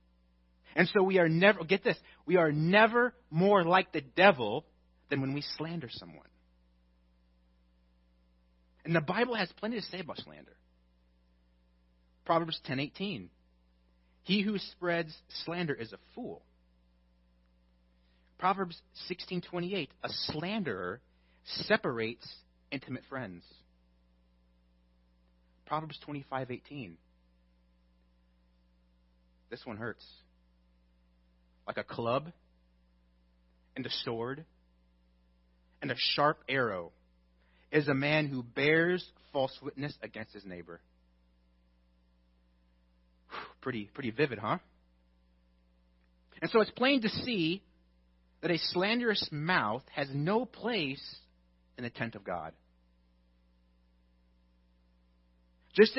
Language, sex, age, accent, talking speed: English, male, 30-49, American, 100 wpm